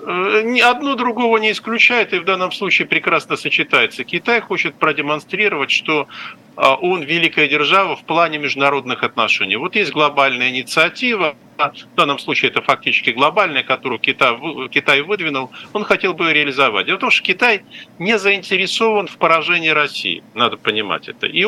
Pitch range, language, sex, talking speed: 150-230 Hz, Russian, male, 155 wpm